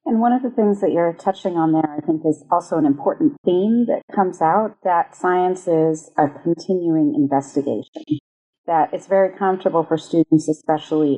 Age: 40-59